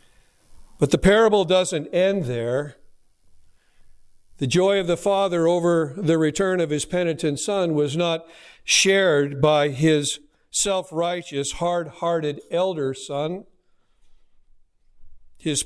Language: English